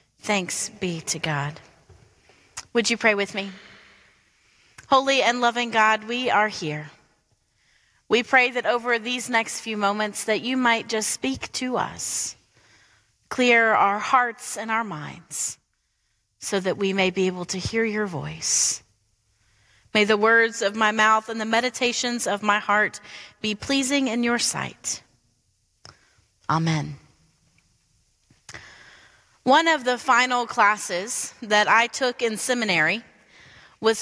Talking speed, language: 135 wpm, English